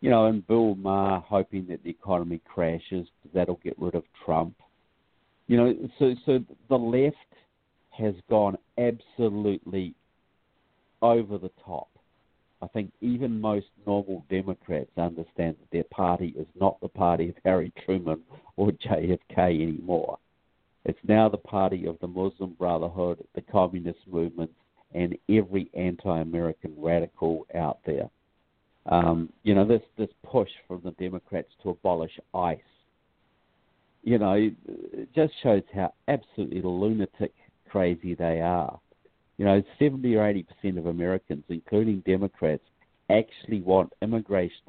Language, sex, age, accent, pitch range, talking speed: English, male, 50-69, Australian, 85-110 Hz, 135 wpm